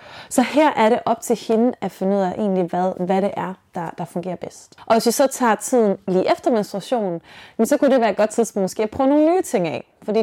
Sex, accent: female, native